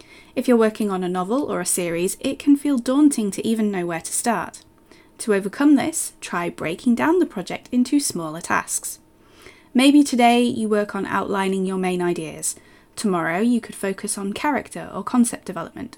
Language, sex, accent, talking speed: English, female, British, 180 wpm